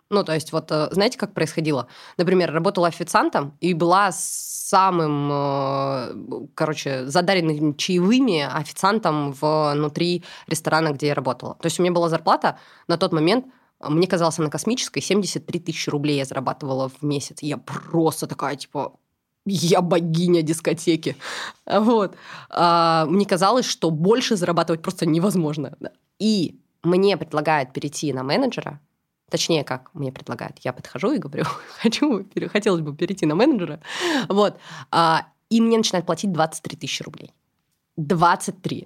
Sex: female